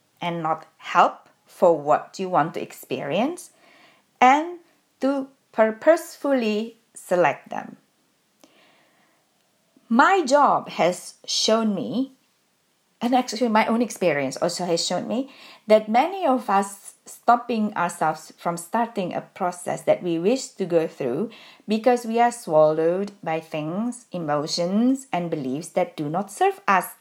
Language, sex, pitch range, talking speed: English, female, 180-255 Hz, 130 wpm